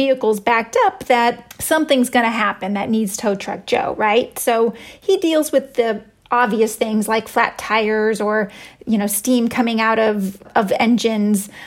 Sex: female